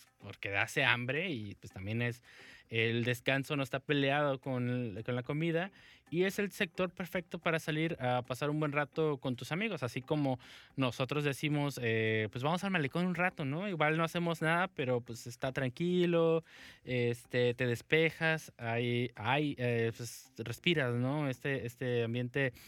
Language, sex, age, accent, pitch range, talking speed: English, male, 20-39, Mexican, 120-155 Hz, 170 wpm